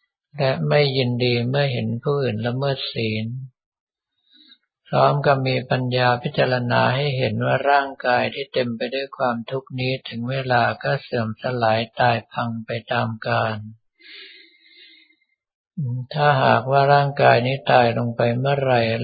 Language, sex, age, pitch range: Thai, male, 60-79, 115-135 Hz